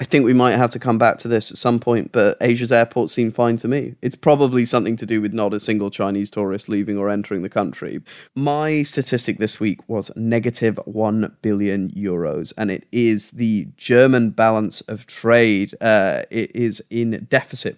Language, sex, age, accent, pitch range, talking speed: English, male, 20-39, British, 105-120 Hz, 195 wpm